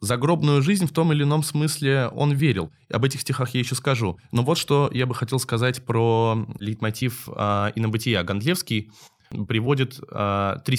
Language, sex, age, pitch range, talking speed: Russian, male, 20-39, 105-135 Hz, 155 wpm